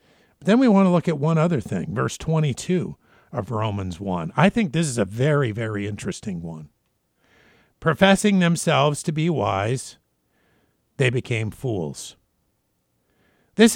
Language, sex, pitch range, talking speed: English, male, 135-185 Hz, 140 wpm